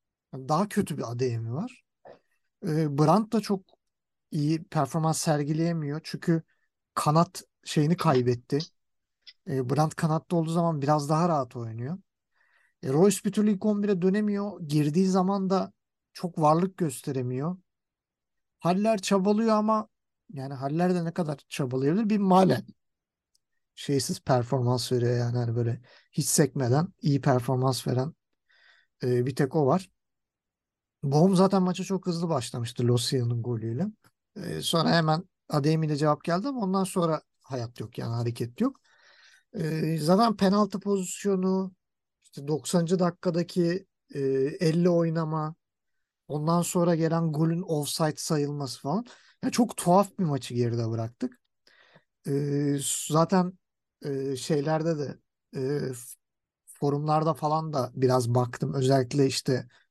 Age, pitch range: 50-69, 135-185 Hz